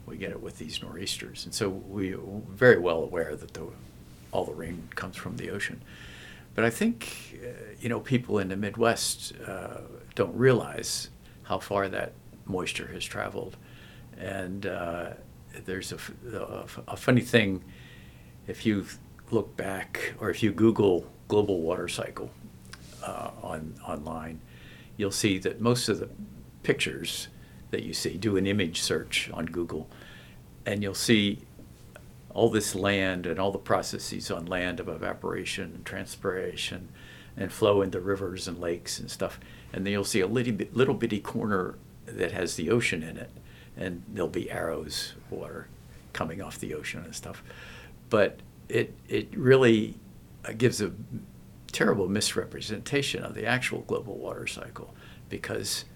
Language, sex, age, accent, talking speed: English, male, 60-79, American, 150 wpm